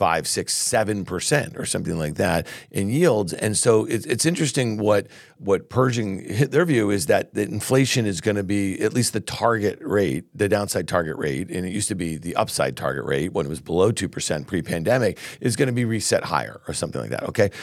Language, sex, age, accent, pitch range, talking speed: English, male, 50-69, American, 95-130 Hz, 215 wpm